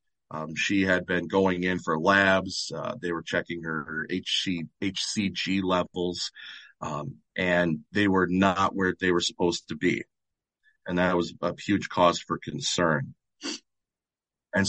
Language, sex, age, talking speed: English, male, 30-49, 155 wpm